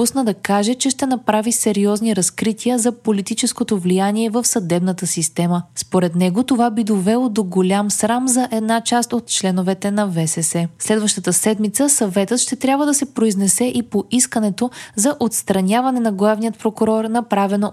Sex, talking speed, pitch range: female, 150 wpm, 190-245 Hz